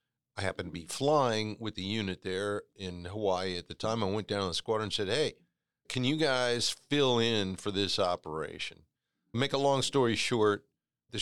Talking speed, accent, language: 200 wpm, American, English